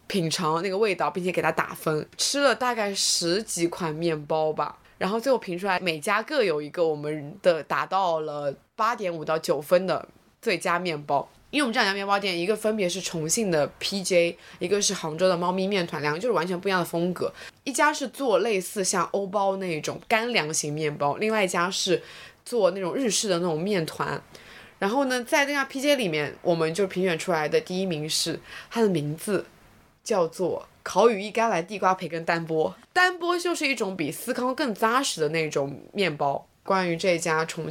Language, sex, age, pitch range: Chinese, female, 20-39, 160-225 Hz